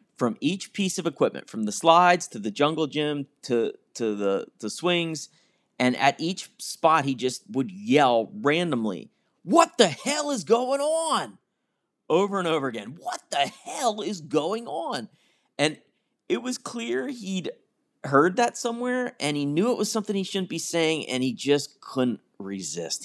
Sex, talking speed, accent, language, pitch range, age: male, 170 wpm, American, English, 130-200 Hz, 40-59